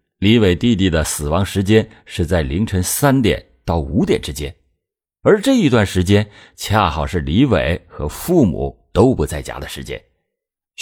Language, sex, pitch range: Chinese, male, 80-115 Hz